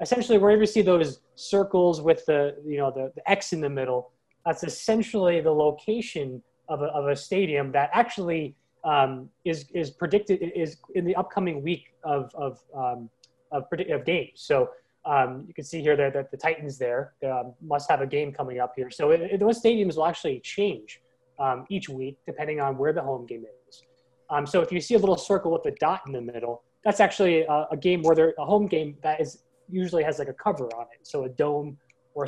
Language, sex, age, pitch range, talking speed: English, male, 20-39, 140-185 Hz, 220 wpm